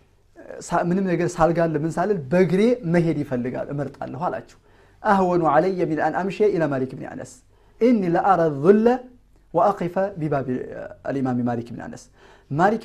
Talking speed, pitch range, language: 160 wpm, 135-180 Hz, Amharic